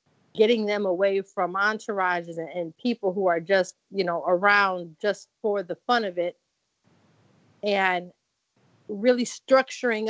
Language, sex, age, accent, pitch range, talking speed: English, female, 40-59, American, 185-230 Hz, 130 wpm